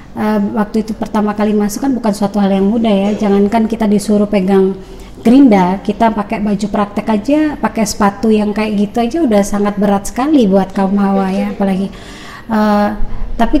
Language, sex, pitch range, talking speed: Indonesian, male, 195-220 Hz, 175 wpm